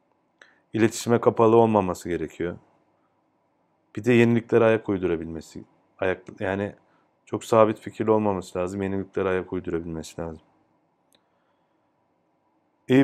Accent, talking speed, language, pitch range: native, 95 wpm, Turkish, 95-115 Hz